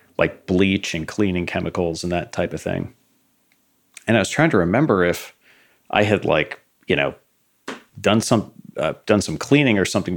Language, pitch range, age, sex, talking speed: English, 85-105 Hz, 40-59, male, 175 wpm